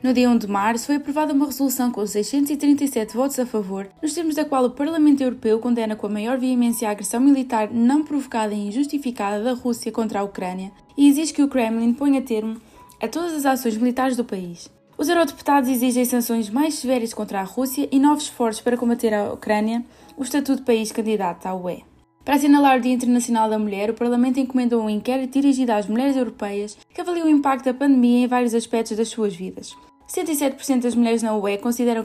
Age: 20-39